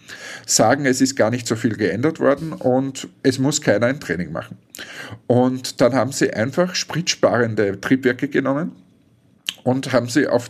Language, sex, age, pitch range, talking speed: German, male, 50-69, 115-140 Hz, 160 wpm